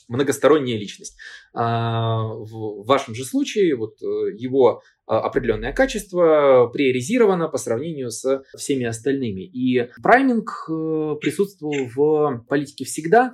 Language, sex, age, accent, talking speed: Russian, male, 20-39, native, 100 wpm